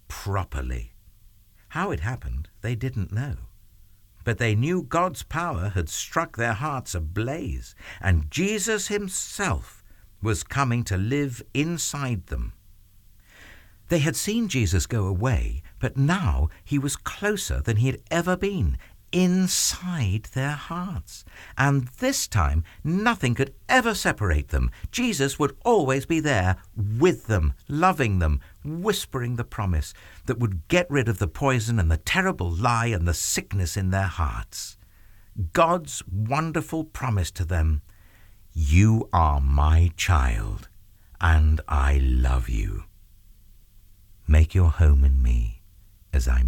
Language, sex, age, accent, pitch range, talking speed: English, male, 60-79, British, 85-135 Hz, 130 wpm